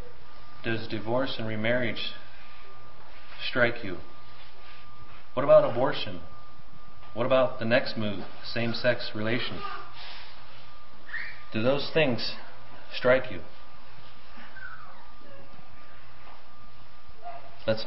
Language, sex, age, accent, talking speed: English, male, 40-59, American, 75 wpm